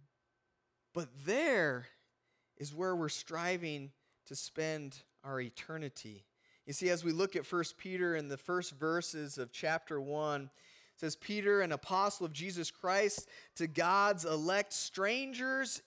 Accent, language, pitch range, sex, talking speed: American, English, 155-200 Hz, male, 140 wpm